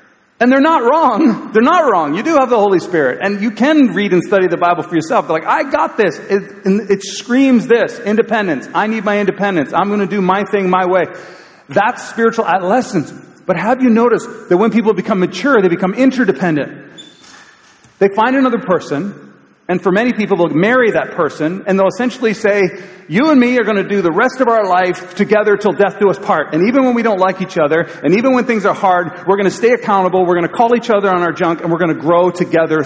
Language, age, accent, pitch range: English, 40-59, American, 180-225 Hz